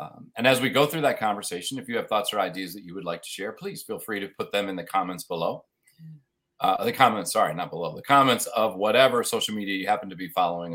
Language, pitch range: English, 100-140 Hz